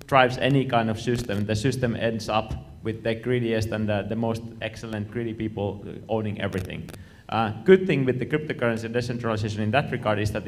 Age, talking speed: 30-49, 190 wpm